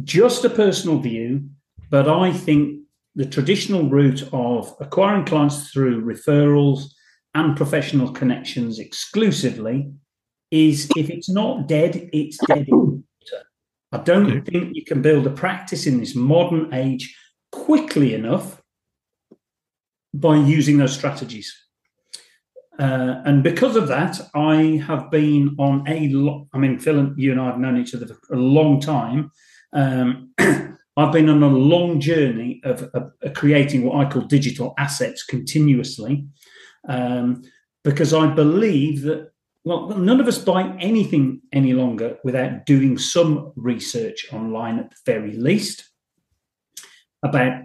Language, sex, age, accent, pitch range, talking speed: English, male, 40-59, British, 130-160 Hz, 140 wpm